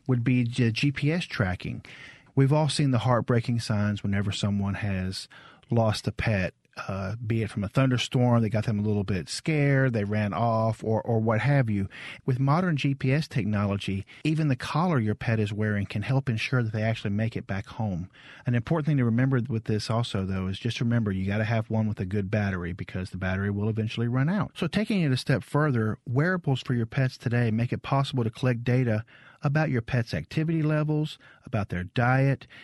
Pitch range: 110-140 Hz